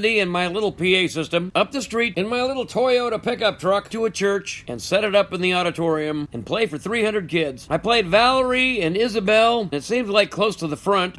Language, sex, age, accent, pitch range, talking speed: English, male, 50-69, American, 165-215 Hz, 225 wpm